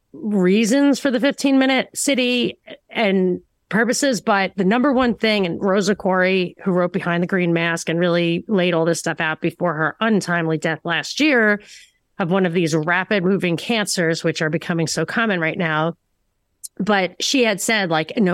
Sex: female